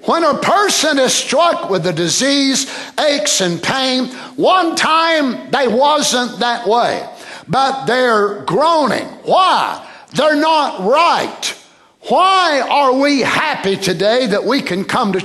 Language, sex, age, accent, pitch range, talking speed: English, male, 60-79, American, 225-305 Hz, 135 wpm